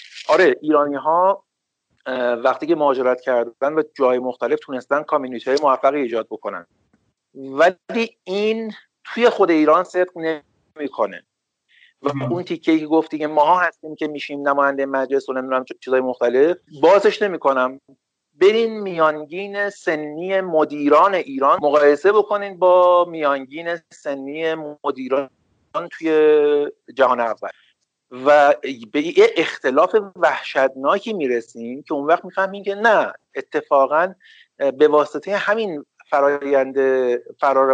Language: Persian